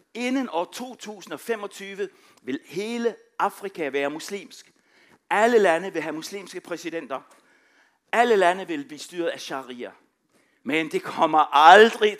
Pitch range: 170-255 Hz